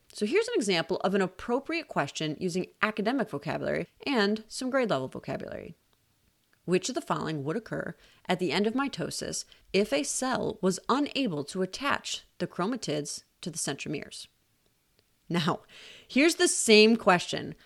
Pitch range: 180-280 Hz